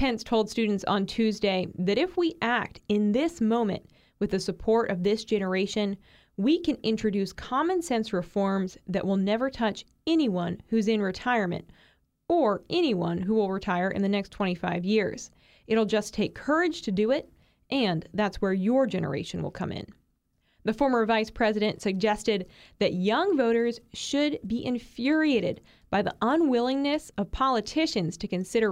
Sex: female